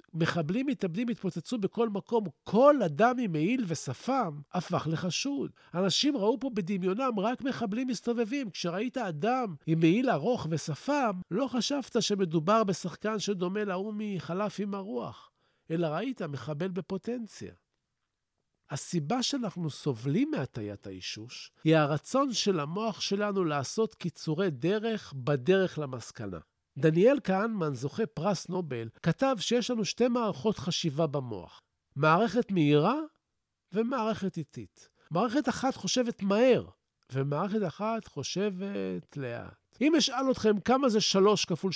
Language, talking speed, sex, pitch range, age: Hebrew, 120 wpm, male, 160-240 Hz, 50-69